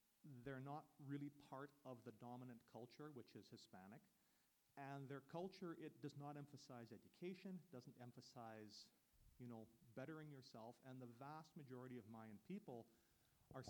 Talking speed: 145 wpm